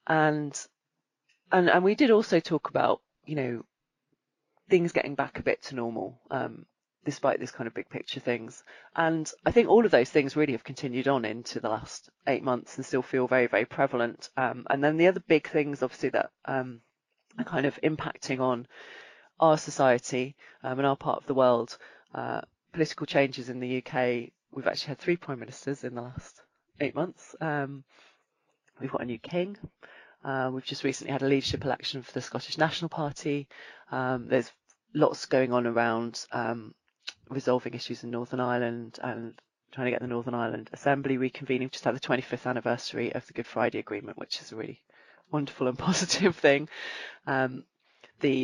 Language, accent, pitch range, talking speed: English, British, 120-145 Hz, 185 wpm